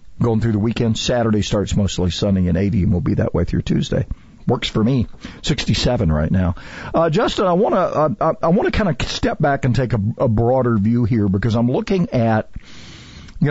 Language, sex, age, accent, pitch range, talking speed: English, male, 50-69, American, 110-150 Hz, 200 wpm